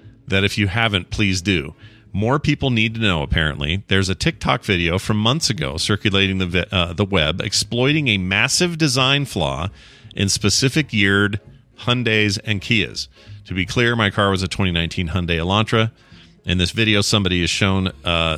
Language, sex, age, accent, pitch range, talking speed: English, male, 40-59, American, 90-115 Hz, 175 wpm